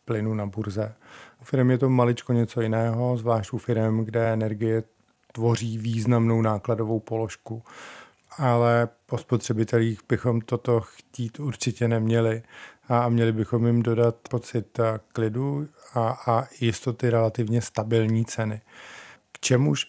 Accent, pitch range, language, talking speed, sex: native, 115-125 Hz, Czech, 125 wpm, male